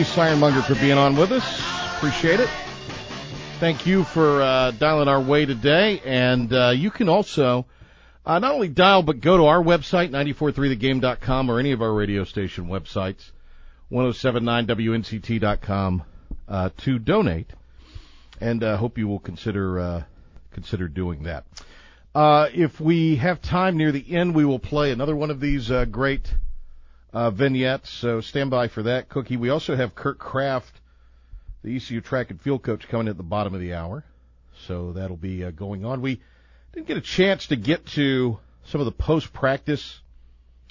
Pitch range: 95-145 Hz